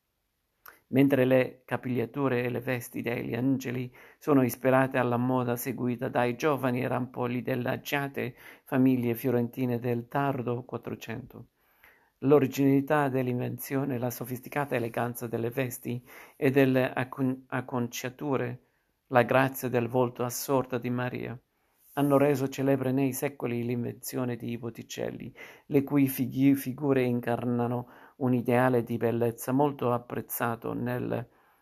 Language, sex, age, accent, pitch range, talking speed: Italian, male, 50-69, native, 120-135 Hz, 115 wpm